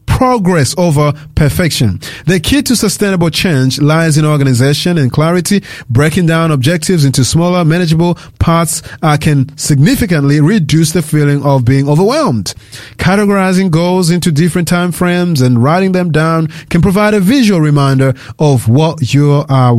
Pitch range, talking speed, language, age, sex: 140-175 Hz, 145 wpm, English, 30-49, male